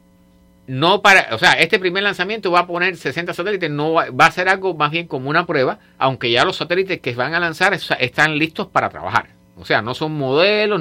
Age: 50-69